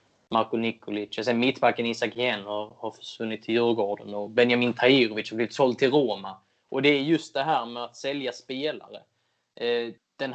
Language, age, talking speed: Swedish, 20-39, 170 wpm